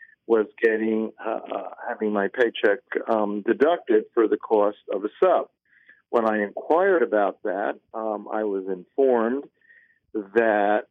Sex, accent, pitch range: male, American, 105-135 Hz